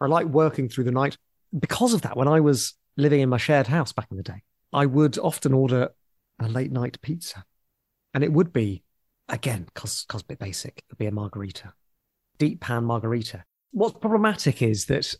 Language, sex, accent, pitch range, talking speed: English, male, British, 130-195 Hz, 195 wpm